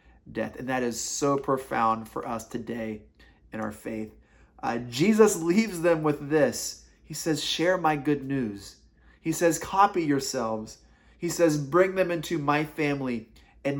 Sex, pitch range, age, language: male, 120-165 Hz, 30-49, English